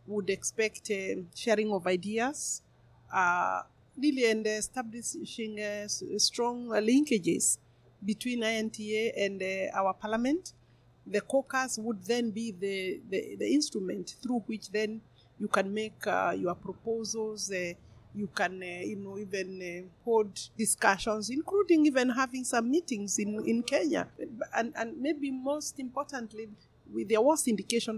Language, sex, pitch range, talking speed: English, female, 195-230 Hz, 135 wpm